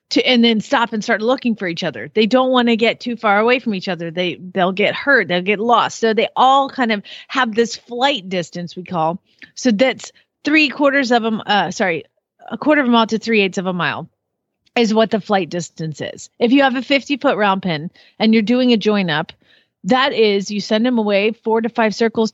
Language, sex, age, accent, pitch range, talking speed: English, female, 40-59, American, 190-240 Hz, 240 wpm